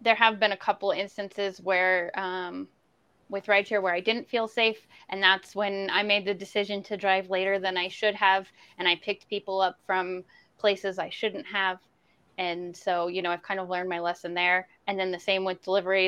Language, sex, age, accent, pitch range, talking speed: English, female, 10-29, American, 180-210 Hz, 215 wpm